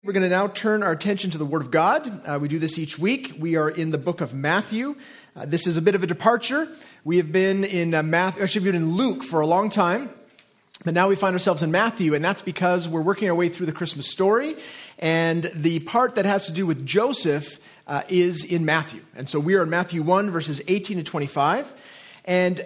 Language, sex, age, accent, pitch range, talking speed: English, male, 30-49, American, 165-215 Hz, 240 wpm